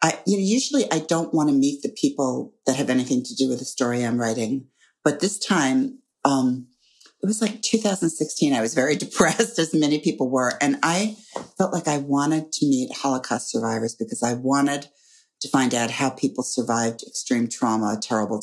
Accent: American